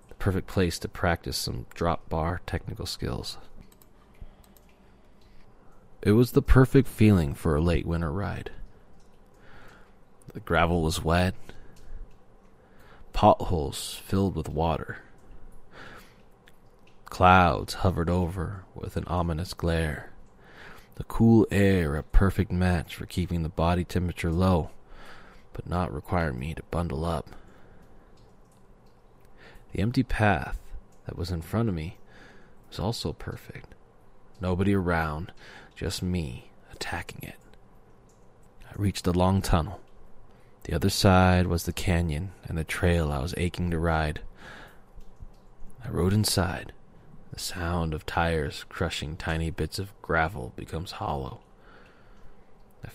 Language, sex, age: English, male, 20-39